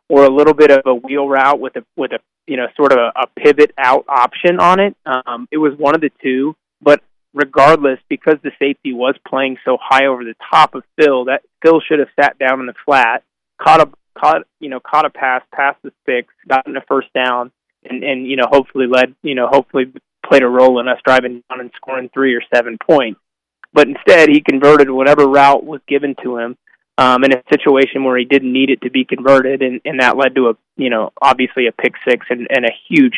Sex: male